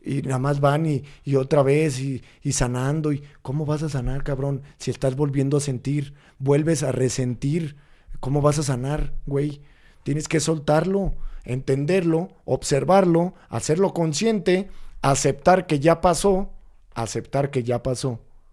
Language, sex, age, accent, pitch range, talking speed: Spanish, male, 40-59, Mexican, 120-145 Hz, 145 wpm